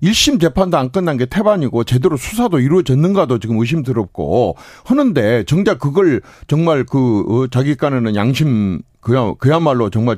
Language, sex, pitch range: Korean, male, 110-155 Hz